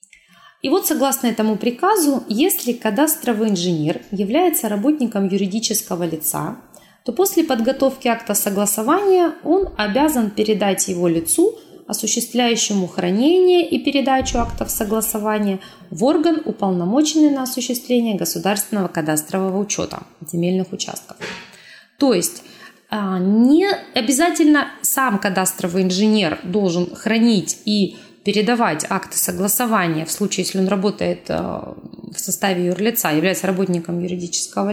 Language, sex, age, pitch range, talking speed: Russian, female, 20-39, 190-260 Hz, 105 wpm